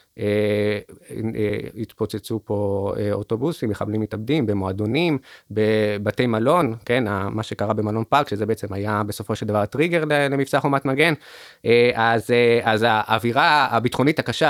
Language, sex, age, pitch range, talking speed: Hebrew, male, 20-39, 105-130 Hz, 145 wpm